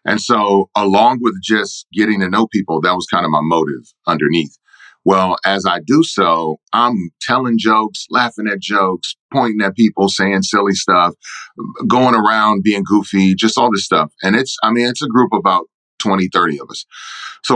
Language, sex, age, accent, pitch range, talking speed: English, male, 40-59, American, 95-115 Hz, 190 wpm